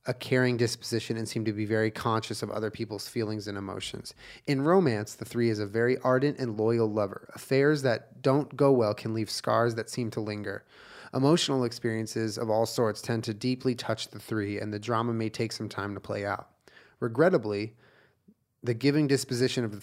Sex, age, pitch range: male, 30-49, 110-125 Hz